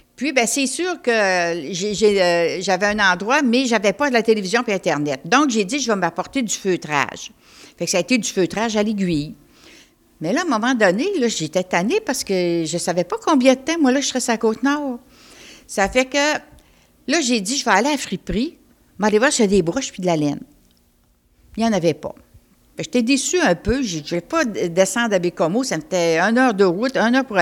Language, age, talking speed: French, 60-79, 240 wpm